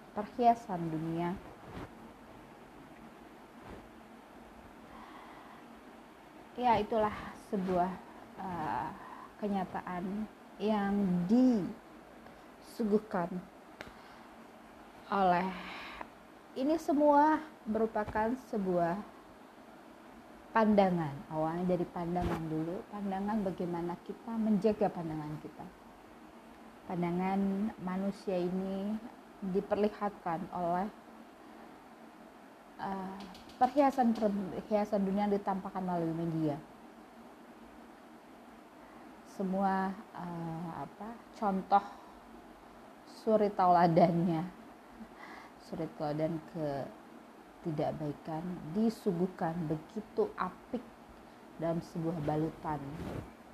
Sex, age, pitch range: female, 30-49, 175-220 Hz